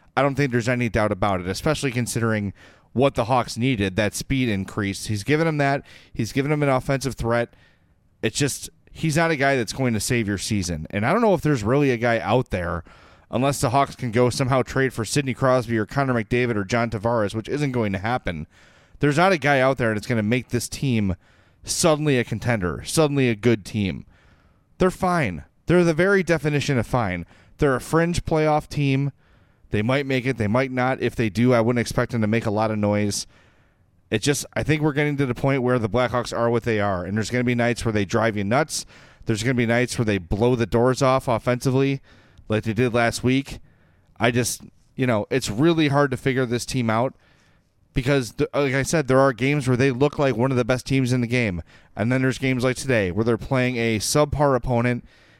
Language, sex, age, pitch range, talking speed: English, male, 30-49, 110-135 Hz, 225 wpm